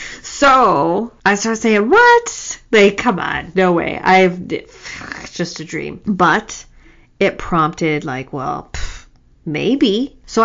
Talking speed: 130 wpm